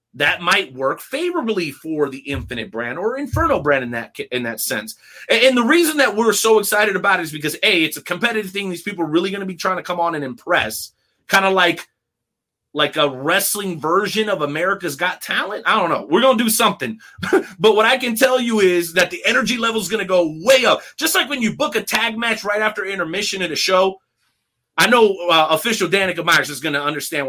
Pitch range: 175-225 Hz